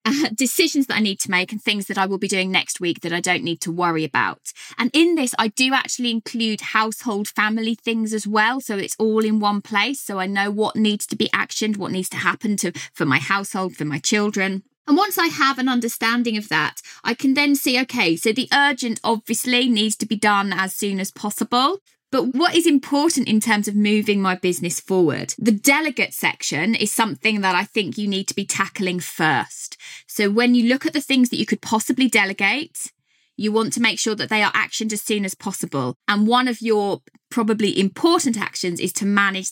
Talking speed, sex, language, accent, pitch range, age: 220 wpm, female, English, British, 190-255 Hz, 20-39